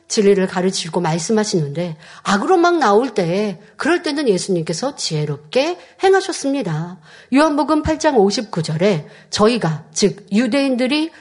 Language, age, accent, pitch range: Korean, 50-69, native, 185-260 Hz